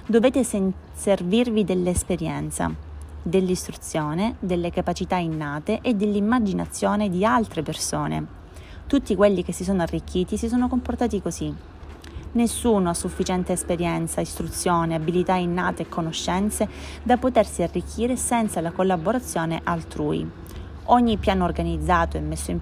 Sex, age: female, 20-39